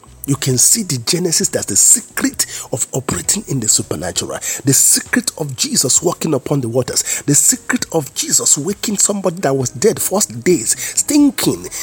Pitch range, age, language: 125-175 Hz, 50-69, English